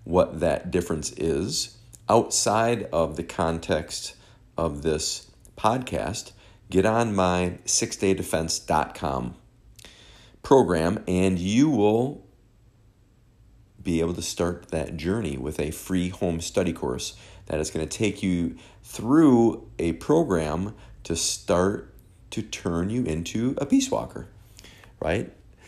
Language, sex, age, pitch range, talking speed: English, male, 40-59, 80-110 Hz, 115 wpm